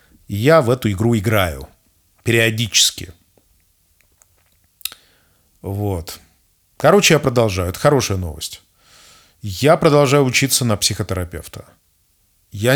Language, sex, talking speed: Russian, male, 90 wpm